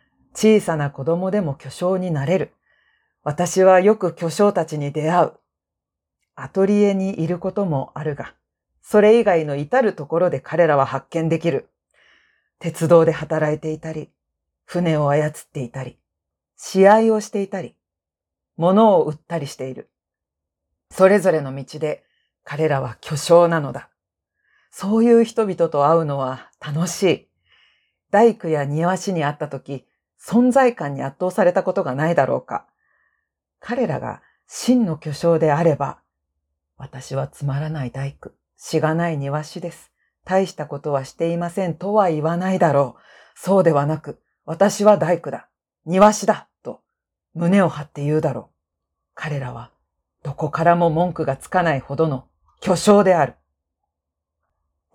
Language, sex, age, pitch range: Japanese, female, 40-59, 135-180 Hz